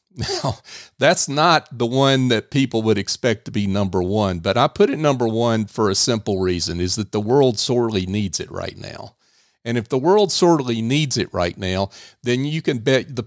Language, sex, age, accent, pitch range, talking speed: English, male, 50-69, American, 105-145 Hz, 210 wpm